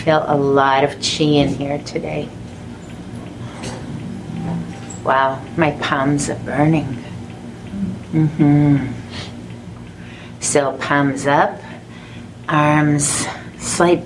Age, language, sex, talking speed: 40-59, English, female, 90 wpm